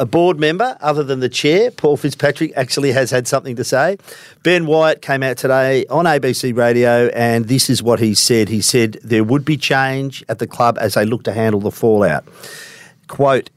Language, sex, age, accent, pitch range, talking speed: English, male, 50-69, Australian, 105-135 Hz, 205 wpm